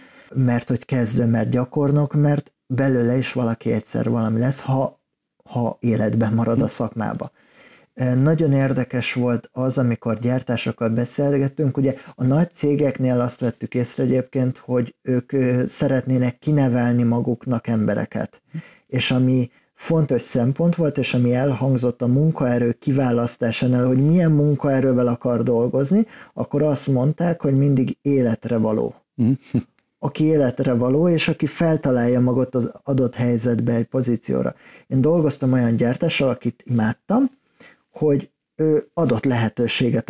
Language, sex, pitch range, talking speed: Hungarian, male, 120-150 Hz, 125 wpm